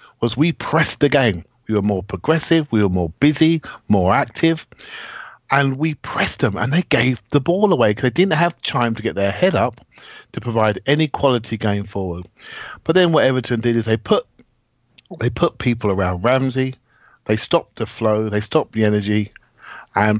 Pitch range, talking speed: 100-125 Hz, 185 wpm